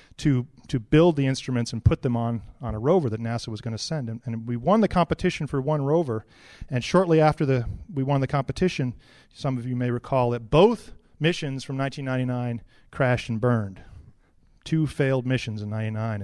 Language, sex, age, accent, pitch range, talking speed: English, male, 40-59, American, 110-135 Hz, 195 wpm